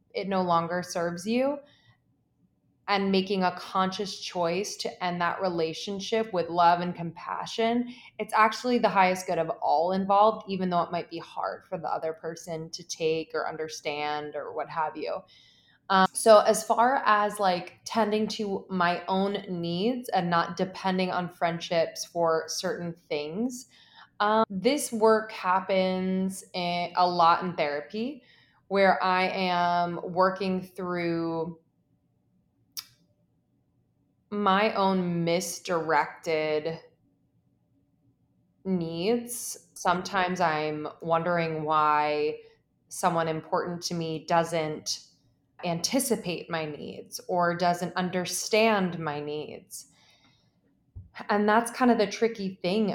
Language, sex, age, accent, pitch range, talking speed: English, female, 20-39, American, 165-205 Hz, 120 wpm